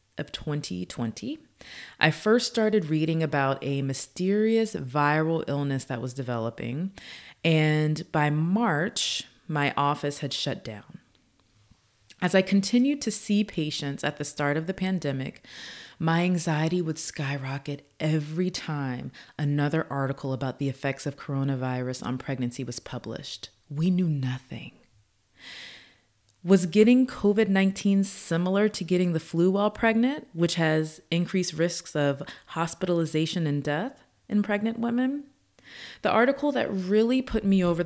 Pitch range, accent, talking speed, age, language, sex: 140-185 Hz, American, 130 wpm, 30-49, English, female